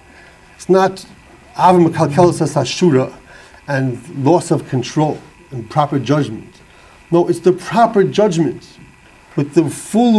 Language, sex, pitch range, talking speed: English, male, 165-200 Hz, 100 wpm